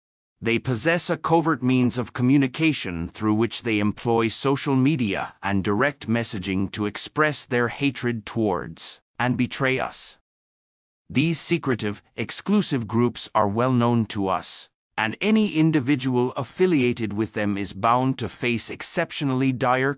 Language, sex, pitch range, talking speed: English, male, 110-140 Hz, 135 wpm